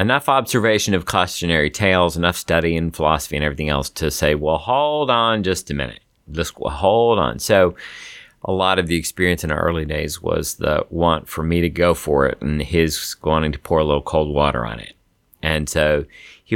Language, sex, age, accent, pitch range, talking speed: English, male, 40-59, American, 75-85 Hz, 205 wpm